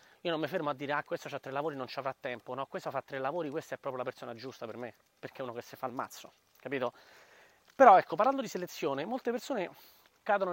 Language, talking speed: Italian, 250 wpm